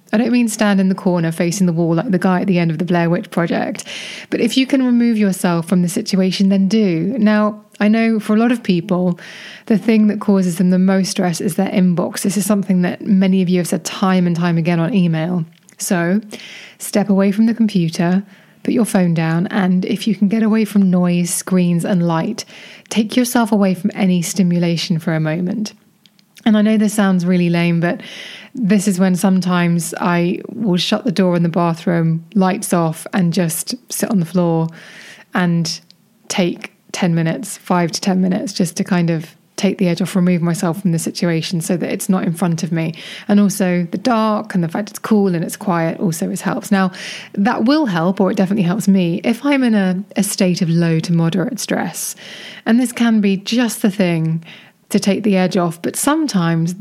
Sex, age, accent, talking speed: female, 20-39, British, 210 wpm